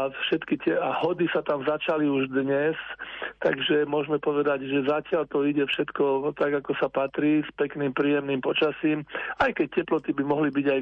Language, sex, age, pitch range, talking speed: Slovak, male, 40-59, 140-155 Hz, 175 wpm